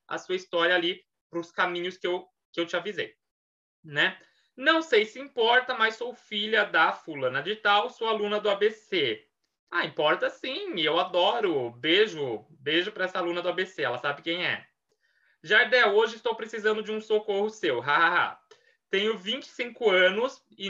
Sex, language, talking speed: male, Portuguese, 160 wpm